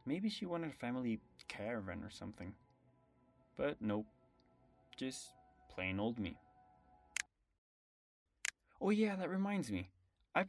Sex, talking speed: male, 115 wpm